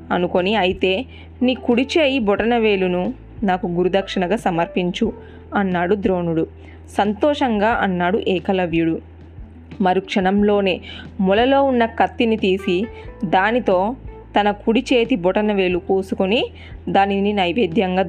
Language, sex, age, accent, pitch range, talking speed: Telugu, female, 20-39, native, 185-230 Hz, 85 wpm